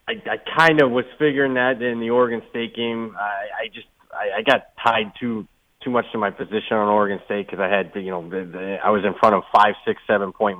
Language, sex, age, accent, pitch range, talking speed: English, male, 30-49, American, 90-110 Hz, 255 wpm